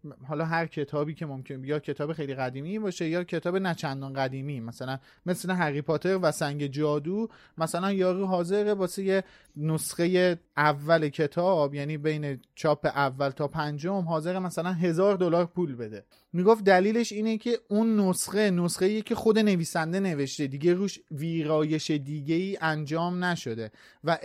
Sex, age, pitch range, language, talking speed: male, 30-49, 155-195 Hz, Persian, 150 wpm